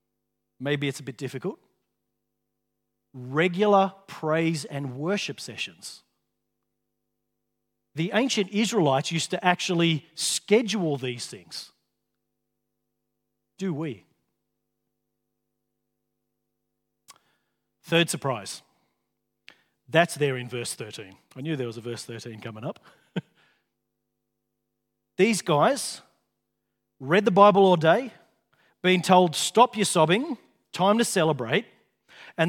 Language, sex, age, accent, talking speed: English, male, 40-59, Australian, 100 wpm